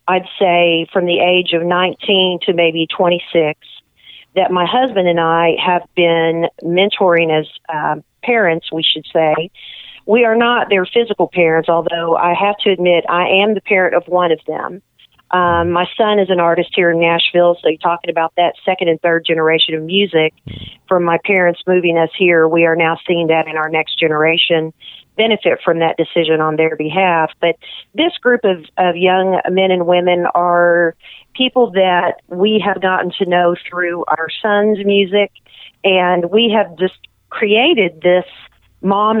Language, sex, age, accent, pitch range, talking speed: English, female, 40-59, American, 170-195 Hz, 175 wpm